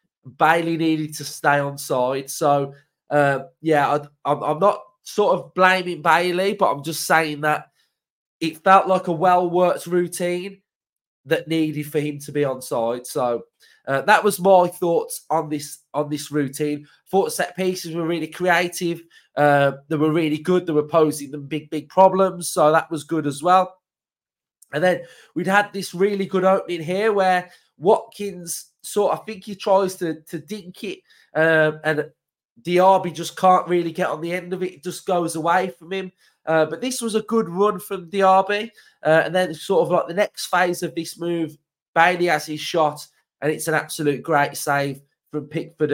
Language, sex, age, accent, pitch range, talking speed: English, male, 20-39, British, 150-190 Hz, 185 wpm